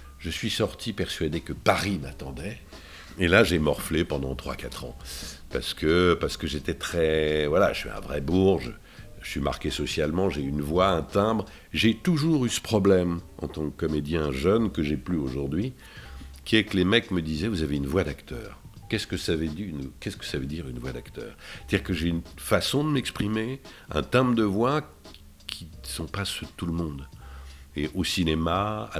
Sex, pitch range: male, 70-100 Hz